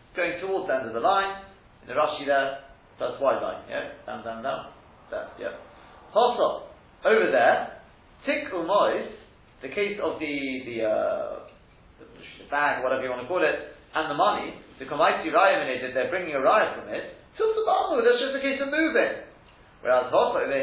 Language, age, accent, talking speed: English, 40-59, British, 185 wpm